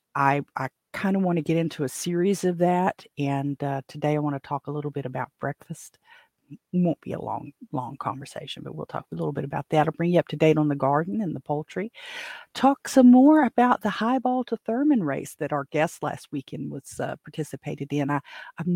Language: English